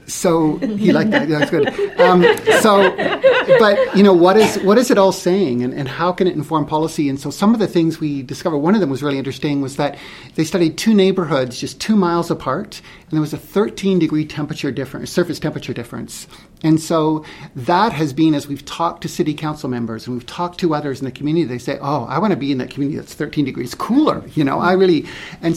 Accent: American